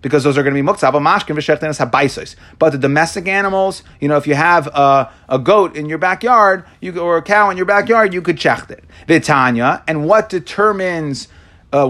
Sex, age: male, 30-49